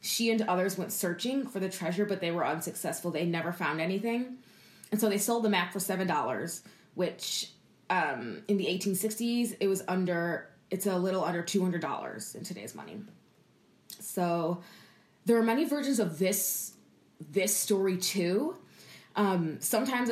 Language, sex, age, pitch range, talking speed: English, female, 20-39, 175-210 Hz, 155 wpm